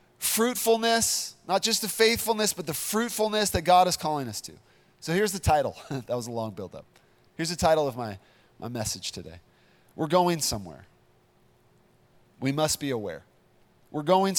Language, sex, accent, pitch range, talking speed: English, male, American, 155-215 Hz, 165 wpm